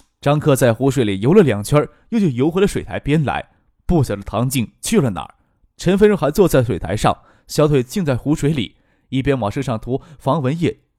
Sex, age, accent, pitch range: male, 20-39, native, 115-180 Hz